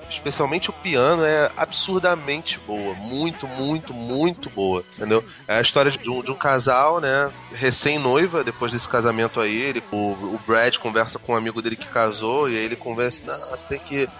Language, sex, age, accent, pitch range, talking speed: Portuguese, male, 20-39, Brazilian, 115-165 Hz, 185 wpm